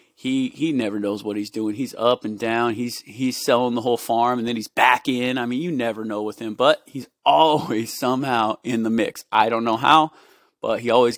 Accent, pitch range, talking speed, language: American, 110-125 Hz, 230 wpm, English